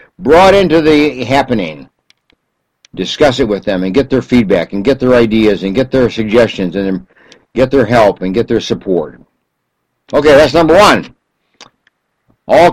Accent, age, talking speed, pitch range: American, 60-79, 155 wpm, 110-145 Hz